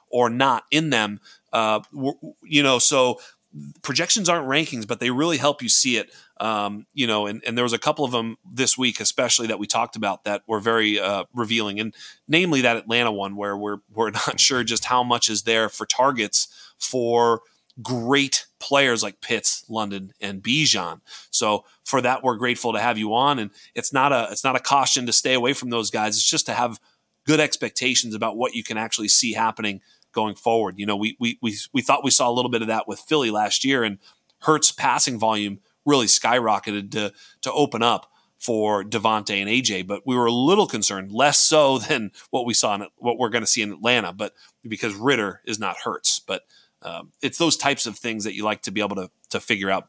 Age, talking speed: 30-49, 215 wpm